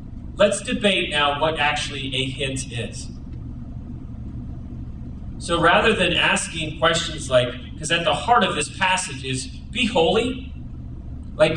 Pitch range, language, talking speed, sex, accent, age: 125-180 Hz, English, 130 wpm, male, American, 30-49